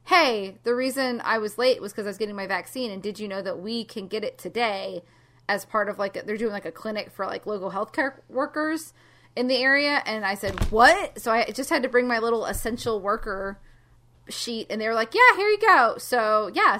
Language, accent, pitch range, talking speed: English, American, 205-255 Hz, 235 wpm